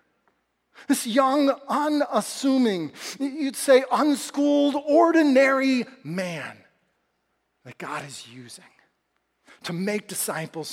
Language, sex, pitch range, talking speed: English, male, 165-245 Hz, 85 wpm